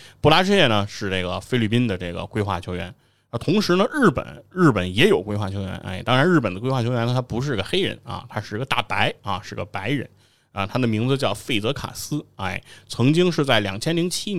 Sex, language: male, Chinese